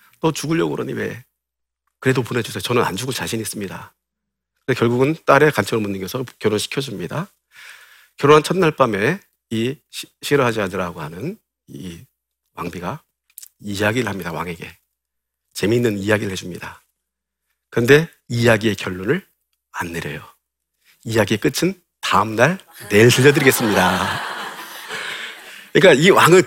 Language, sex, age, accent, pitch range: Korean, male, 40-59, native, 100-150 Hz